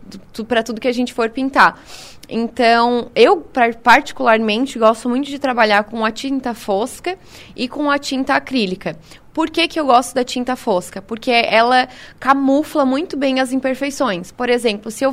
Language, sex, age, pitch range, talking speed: Portuguese, female, 20-39, 230-275 Hz, 165 wpm